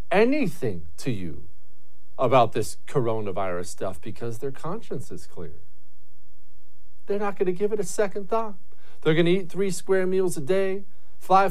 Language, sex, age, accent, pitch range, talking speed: English, male, 50-69, American, 130-200 Hz, 160 wpm